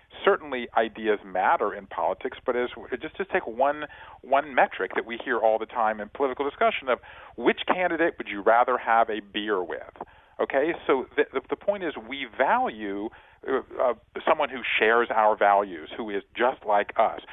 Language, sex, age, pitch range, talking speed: English, male, 40-59, 110-155 Hz, 180 wpm